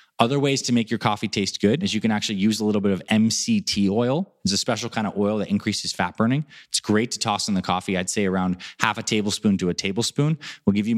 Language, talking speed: English, 260 wpm